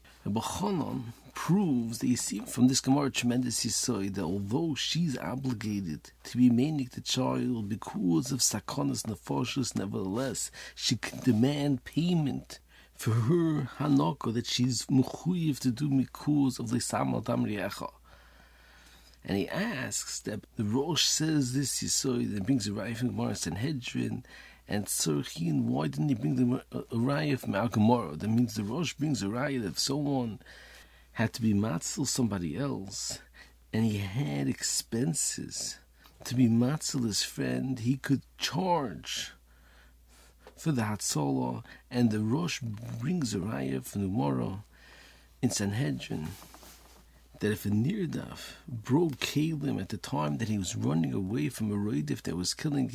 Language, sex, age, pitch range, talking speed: English, male, 50-69, 105-135 Hz, 145 wpm